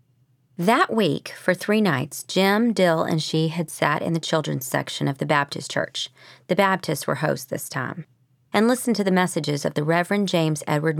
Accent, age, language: American, 40-59, English